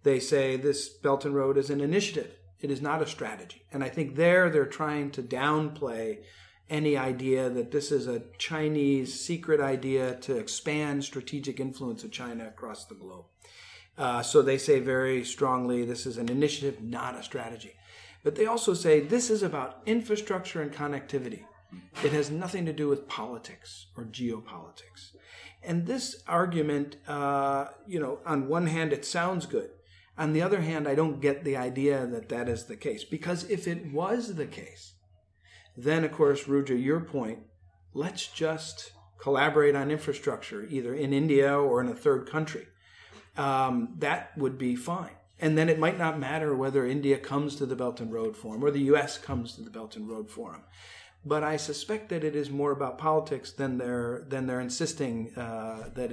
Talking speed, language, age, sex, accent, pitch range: 180 wpm, English, 40-59, male, American, 125-155 Hz